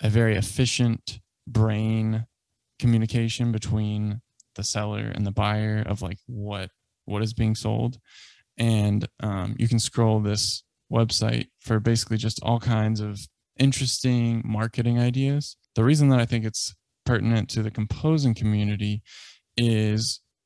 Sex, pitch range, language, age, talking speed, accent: male, 105-120 Hz, English, 20-39, 135 wpm, American